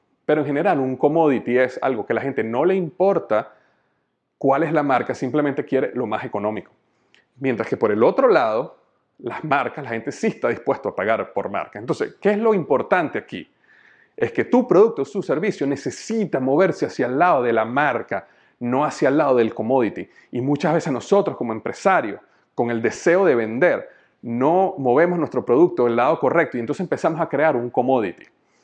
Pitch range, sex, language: 125-170 Hz, male, Spanish